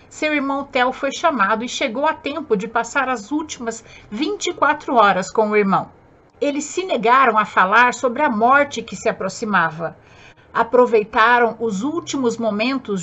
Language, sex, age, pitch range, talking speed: Portuguese, female, 50-69, 215-275 Hz, 150 wpm